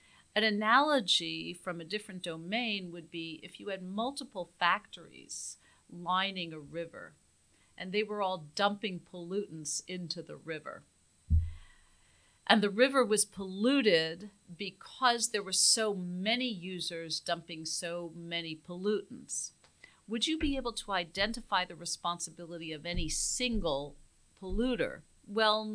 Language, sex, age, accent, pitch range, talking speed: English, female, 50-69, American, 165-210 Hz, 125 wpm